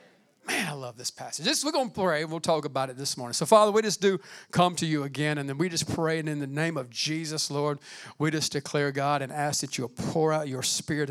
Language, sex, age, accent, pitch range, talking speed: English, male, 50-69, American, 145-200 Hz, 260 wpm